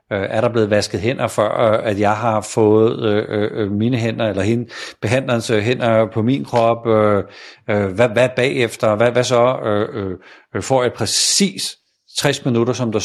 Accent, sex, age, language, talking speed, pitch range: native, male, 60-79, Danish, 175 wpm, 105-125 Hz